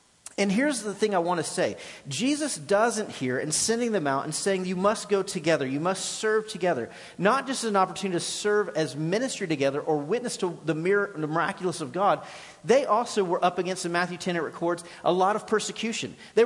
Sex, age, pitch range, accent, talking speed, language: male, 40-59, 170-220 Hz, American, 215 wpm, English